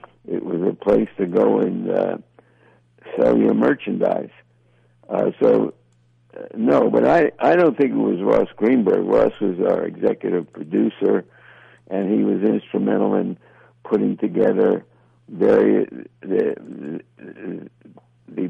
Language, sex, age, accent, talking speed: English, male, 60-79, American, 130 wpm